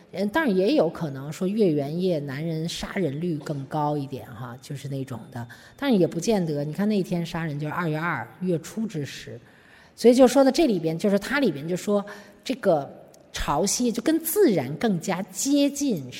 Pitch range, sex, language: 155-230 Hz, female, Chinese